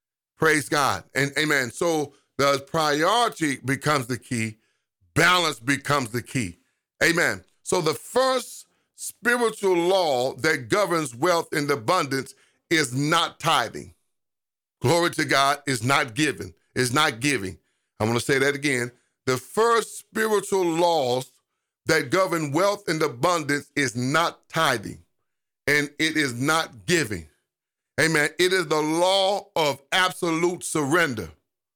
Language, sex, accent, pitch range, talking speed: English, male, American, 140-180 Hz, 125 wpm